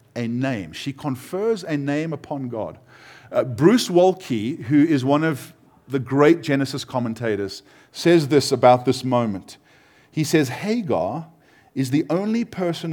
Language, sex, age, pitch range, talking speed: English, male, 50-69, 130-175 Hz, 145 wpm